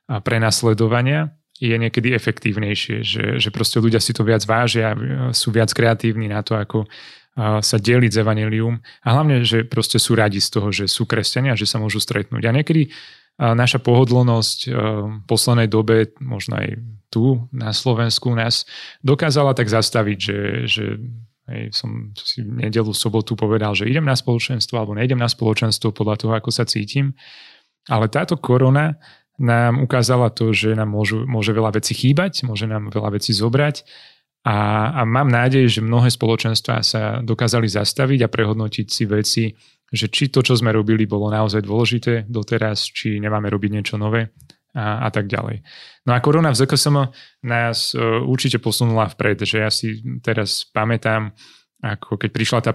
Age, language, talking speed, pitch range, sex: 30-49, Slovak, 165 wpm, 110-125 Hz, male